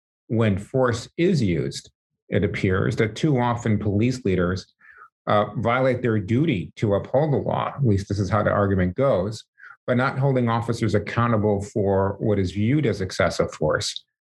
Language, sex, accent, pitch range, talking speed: English, male, American, 100-125 Hz, 165 wpm